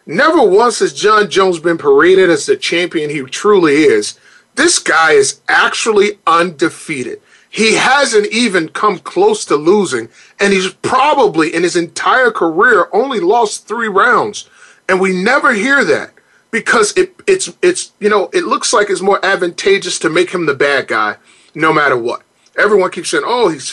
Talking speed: 170 wpm